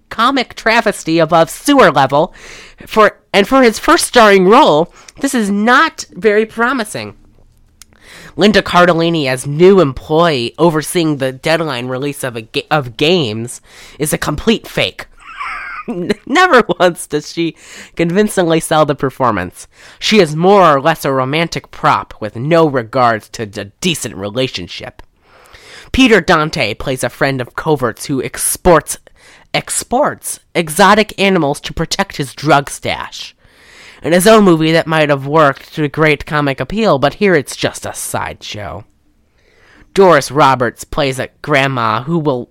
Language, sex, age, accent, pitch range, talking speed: English, female, 20-39, American, 130-185 Hz, 140 wpm